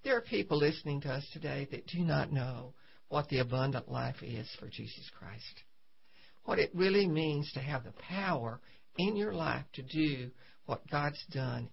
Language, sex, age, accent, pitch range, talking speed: English, female, 60-79, American, 130-175 Hz, 180 wpm